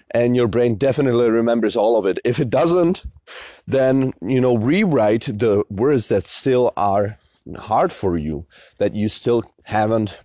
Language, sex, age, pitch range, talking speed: Czech, male, 30-49, 105-135 Hz, 160 wpm